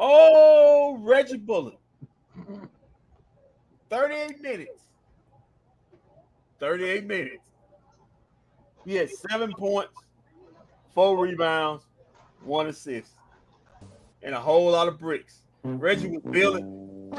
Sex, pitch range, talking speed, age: male, 170-240 Hz, 85 wpm, 40-59